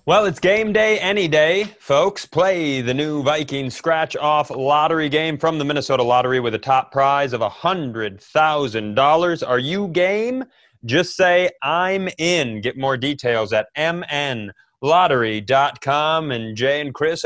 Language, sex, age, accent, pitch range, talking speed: English, male, 30-49, American, 125-165 Hz, 140 wpm